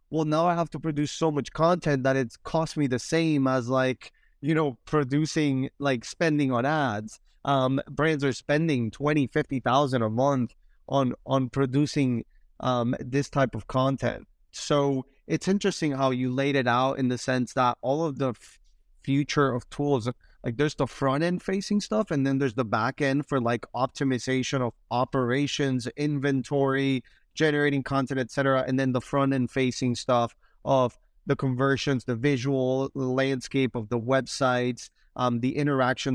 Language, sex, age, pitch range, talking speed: English, male, 20-39, 125-145 Hz, 165 wpm